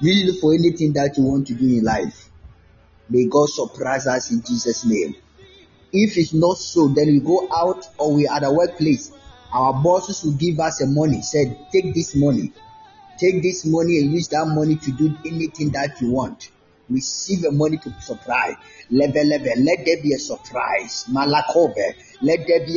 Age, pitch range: 30-49, 115-160 Hz